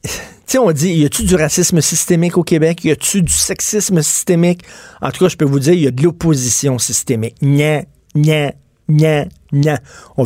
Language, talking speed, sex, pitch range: French, 195 wpm, male, 140-175 Hz